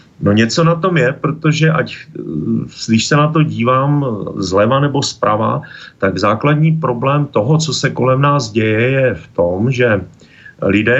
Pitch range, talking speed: 115-135 Hz, 160 wpm